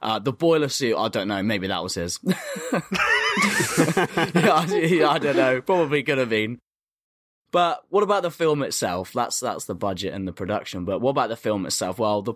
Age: 10-29